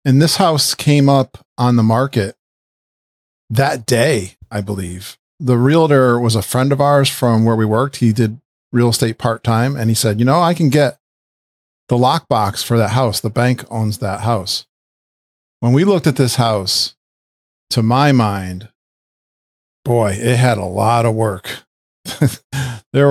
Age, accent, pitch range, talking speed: 50-69, American, 105-130 Hz, 165 wpm